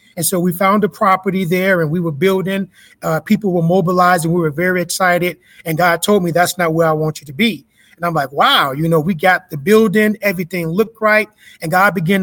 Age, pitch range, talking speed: 30-49, 170-200 Hz, 230 wpm